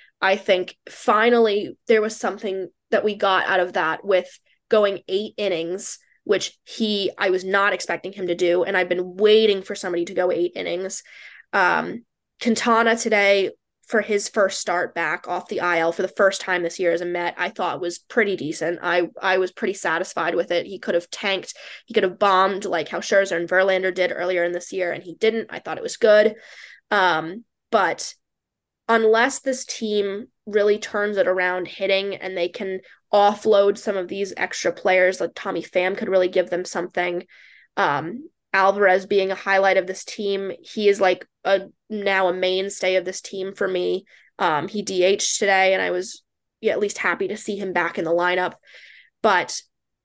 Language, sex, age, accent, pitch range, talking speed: English, female, 10-29, American, 180-205 Hz, 190 wpm